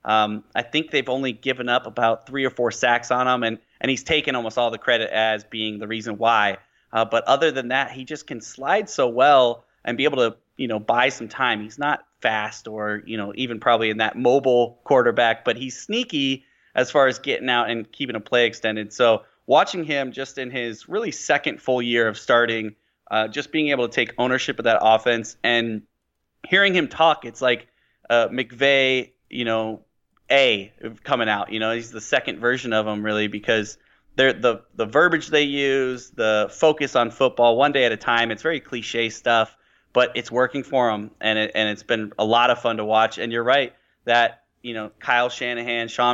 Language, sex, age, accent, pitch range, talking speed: English, male, 30-49, American, 115-135 Hz, 205 wpm